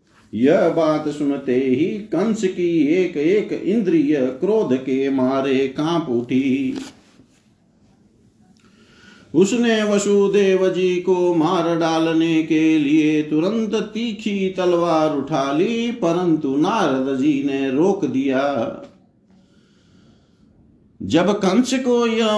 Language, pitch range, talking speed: Hindi, 145-195 Hz, 95 wpm